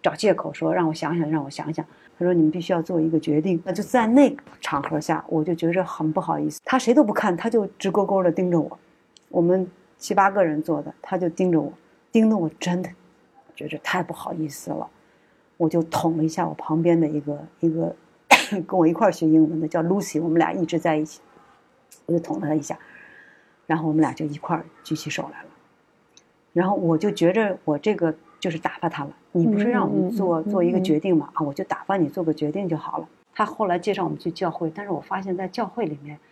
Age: 50-69